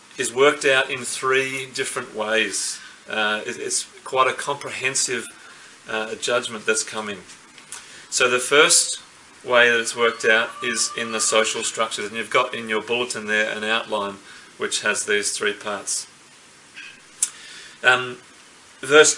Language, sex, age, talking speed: English, male, 30-49, 140 wpm